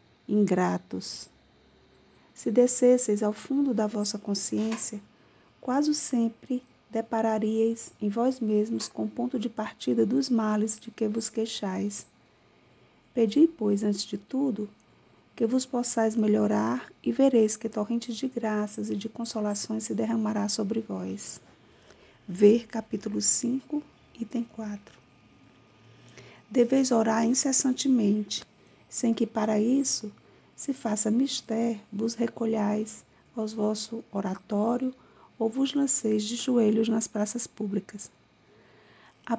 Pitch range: 205-240 Hz